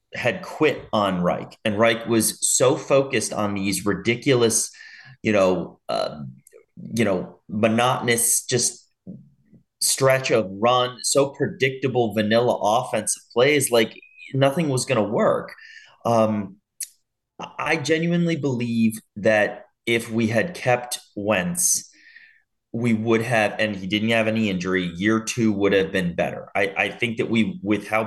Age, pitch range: 30-49, 100-120 Hz